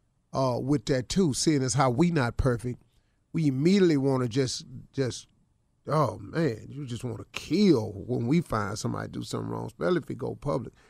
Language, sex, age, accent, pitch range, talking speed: English, male, 40-59, American, 125-155 Hz, 200 wpm